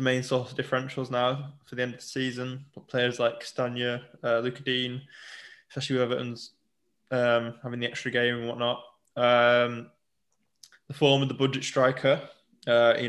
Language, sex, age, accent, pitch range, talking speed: English, male, 20-39, British, 120-140 Hz, 165 wpm